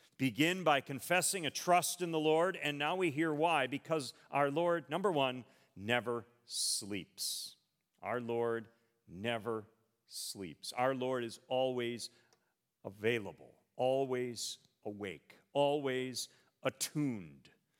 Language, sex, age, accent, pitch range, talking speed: English, male, 50-69, American, 105-135 Hz, 110 wpm